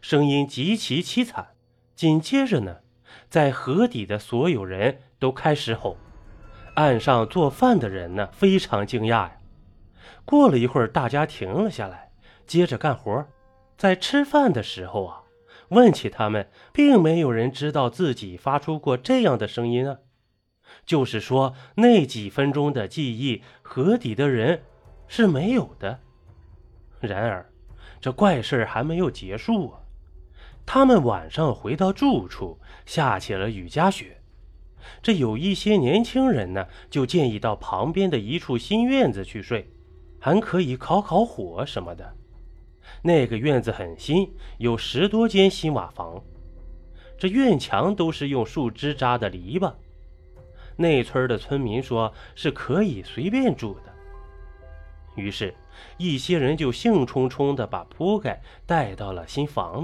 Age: 20-39